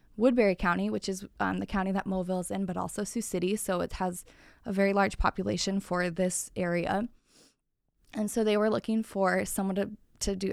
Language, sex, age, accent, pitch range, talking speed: English, female, 20-39, American, 190-220 Hz, 195 wpm